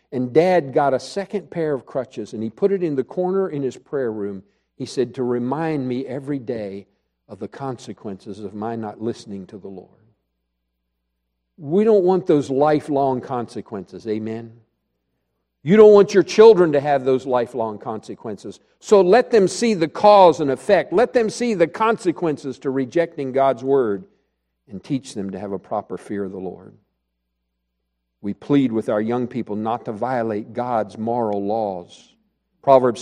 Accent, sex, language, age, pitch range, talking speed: American, male, English, 50-69, 100-155 Hz, 170 wpm